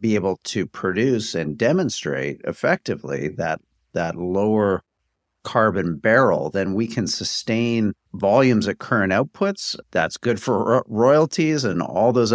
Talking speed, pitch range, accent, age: 135 wpm, 90-115 Hz, American, 50-69